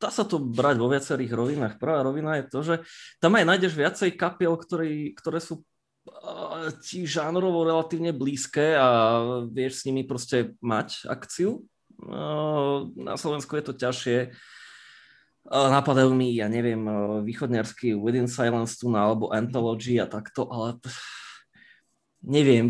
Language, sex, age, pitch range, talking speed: Slovak, male, 20-39, 120-150 Hz, 145 wpm